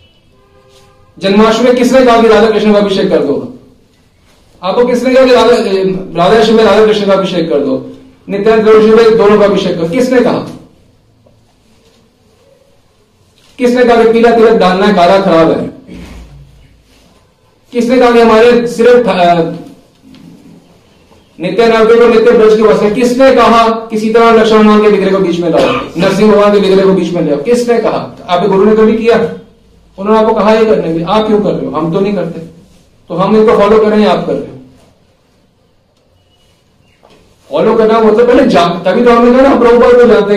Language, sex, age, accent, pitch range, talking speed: Hindi, male, 40-59, native, 175-240 Hz, 145 wpm